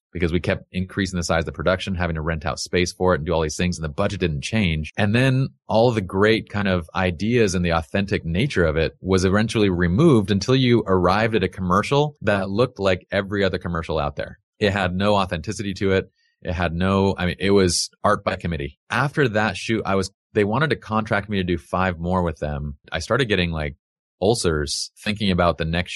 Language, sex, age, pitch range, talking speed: English, male, 30-49, 80-100 Hz, 225 wpm